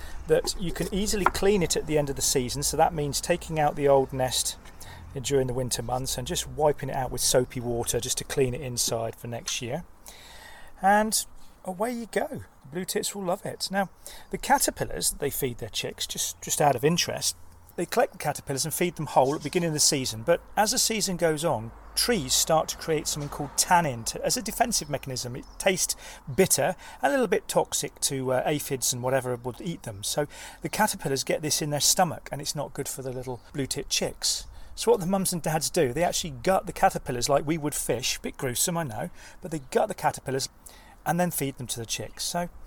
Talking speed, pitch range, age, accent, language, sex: 220 wpm, 130-180 Hz, 40-59, British, English, male